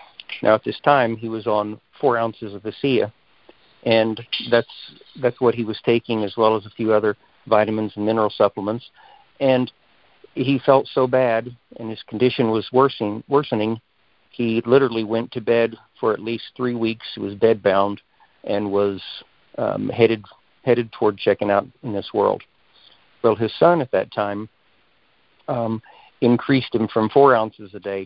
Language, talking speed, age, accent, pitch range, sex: English, 165 wpm, 50-69, American, 110-130 Hz, male